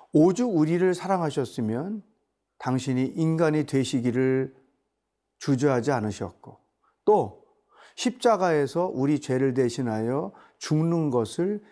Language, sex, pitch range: Korean, male, 125-185 Hz